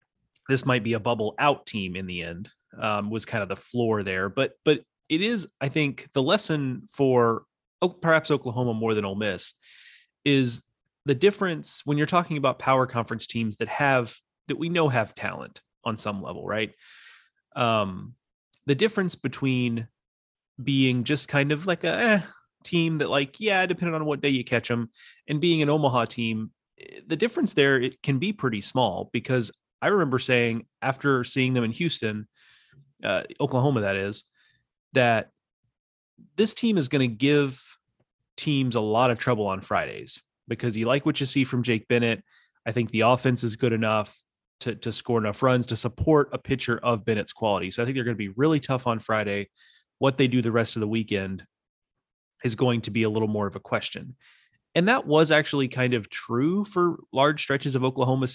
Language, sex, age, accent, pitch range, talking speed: English, male, 30-49, American, 115-145 Hz, 190 wpm